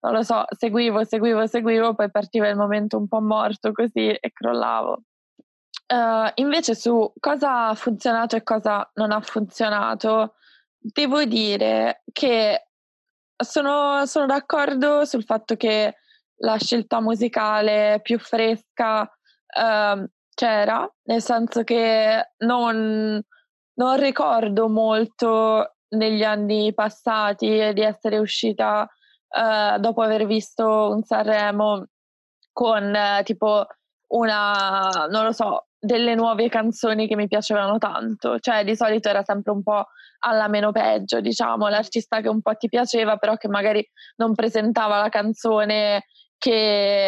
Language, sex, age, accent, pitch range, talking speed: Italian, female, 20-39, native, 210-235 Hz, 125 wpm